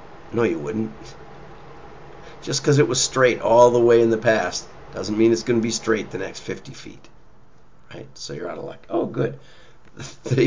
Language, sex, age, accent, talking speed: English, male, 40-59, American, 195 wpm